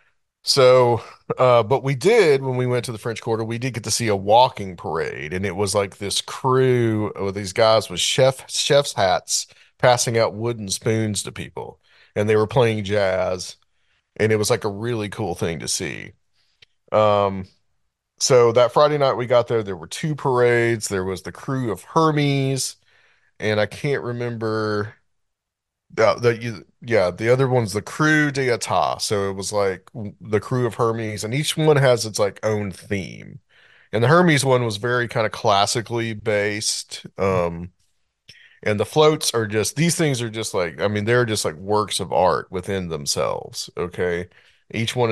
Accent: American